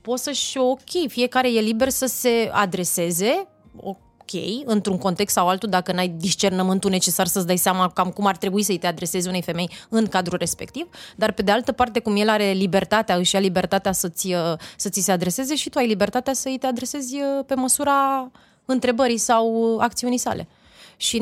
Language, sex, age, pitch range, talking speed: Romanian, female, 20-39, 195-250 Hz, 180 wpm